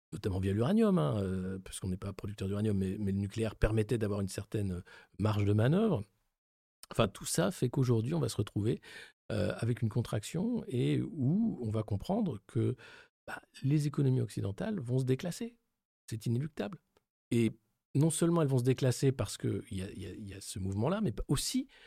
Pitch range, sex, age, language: 110-155 Hz, male, 50-69, French